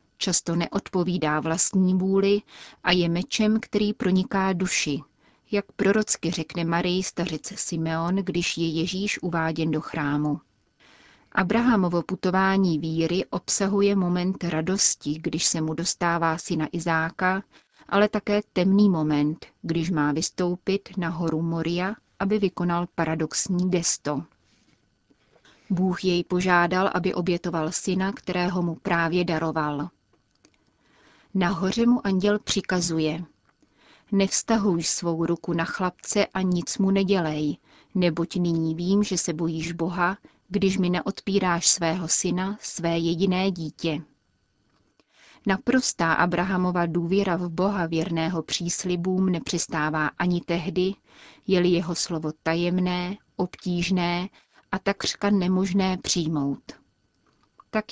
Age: 30-49